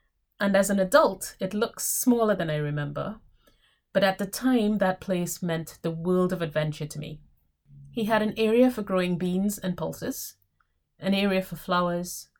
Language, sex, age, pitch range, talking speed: English, female, 30-49, 170-215 Hz, 175 wpm